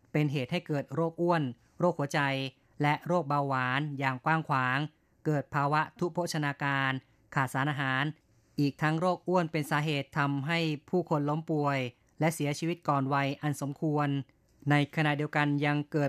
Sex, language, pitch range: female, Thai, 135-155 Hz